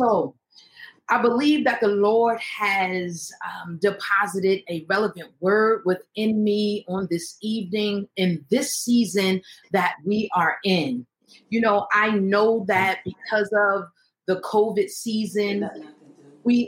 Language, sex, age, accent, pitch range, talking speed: English, female, 30-49, American, 190-230 Hz, 125 wpm